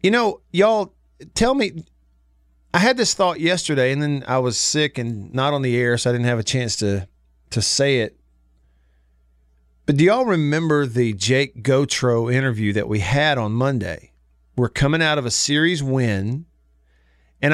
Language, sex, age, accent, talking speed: English, male, 40-59, American, 175 wpm